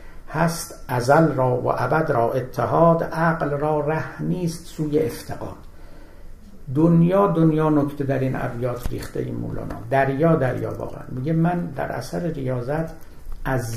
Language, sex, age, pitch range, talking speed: Persian, male, 60-79, 125-160 Hz, 135 wpm